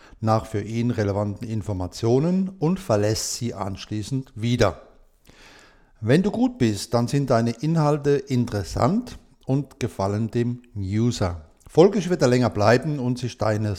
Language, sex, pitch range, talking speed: German, male, 105-145 Hz, 135 wpm